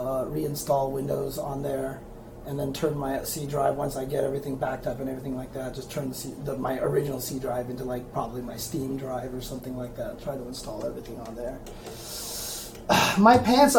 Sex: male